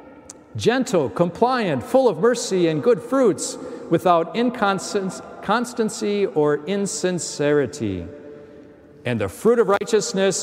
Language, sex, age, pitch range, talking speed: English, male, 50-69, 145-180 Hz, 100 wpm